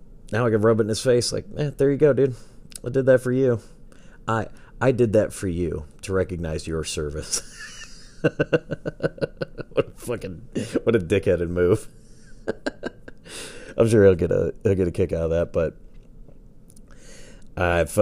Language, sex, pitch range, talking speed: English, male, 80-115 Hz, 165 wpm